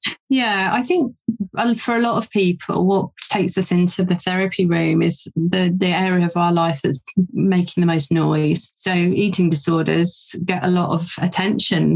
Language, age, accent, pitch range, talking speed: English, 30-49, British, 170-190 Hz, 175 wpm